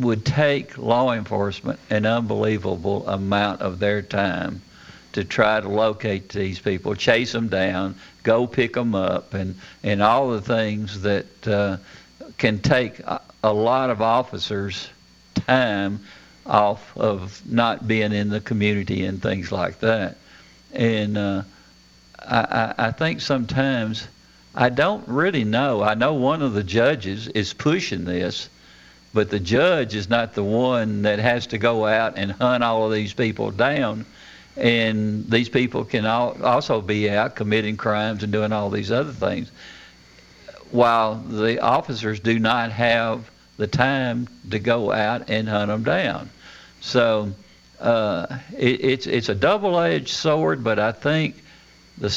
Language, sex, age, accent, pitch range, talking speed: English, male, 60-79, American, 100-120 Hz, 145 wpm